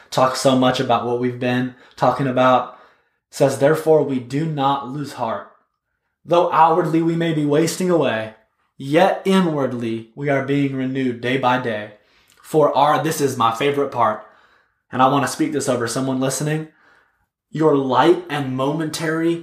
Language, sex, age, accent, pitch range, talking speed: English, male, 20-39, American, 125-150 Hz, 165 wpm